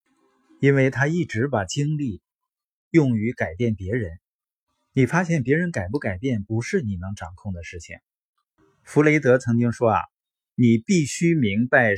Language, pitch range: Chinese, 100-145 Hz